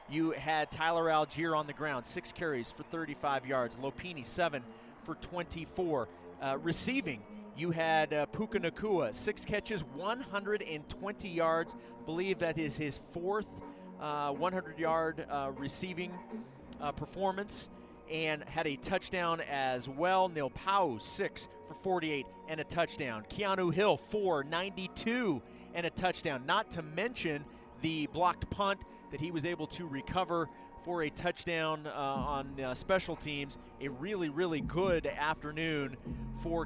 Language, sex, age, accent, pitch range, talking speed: English, male, 30-49, American, 145-175 Hz, 140 wpm